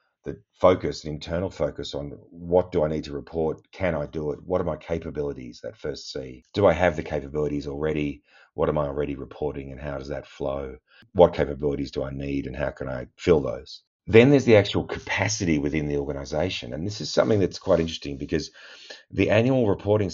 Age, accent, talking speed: 40-59, Australian, 205 wpm